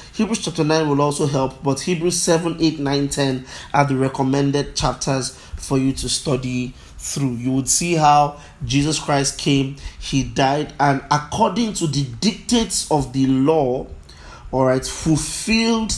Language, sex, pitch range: English, male, 130-155 Hz